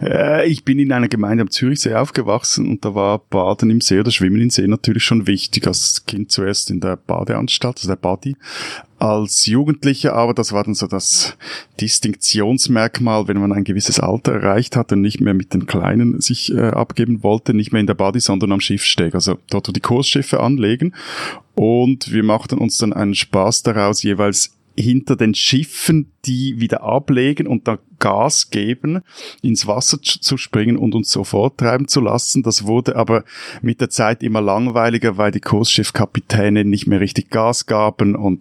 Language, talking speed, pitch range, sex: German, 180 wpm, 105-130 Hz, male